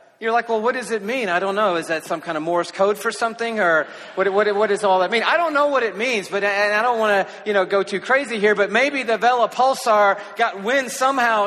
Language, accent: English, American